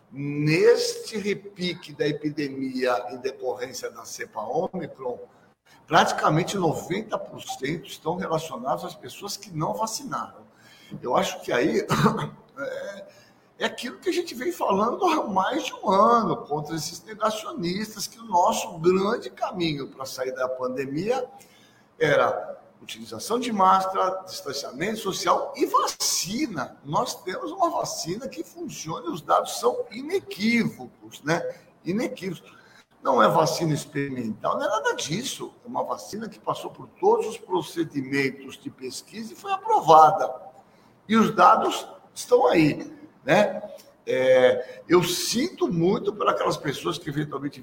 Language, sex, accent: Portuguese, male, Brazilian